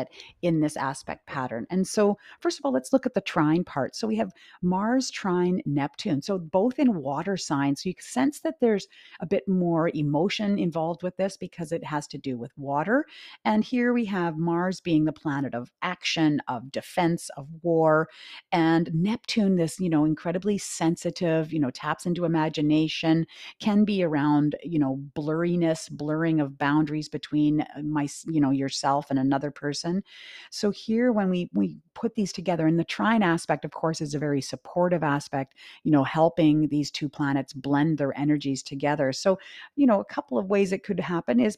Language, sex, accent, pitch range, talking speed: English, female, American, 150-190 Hz, 185 wpm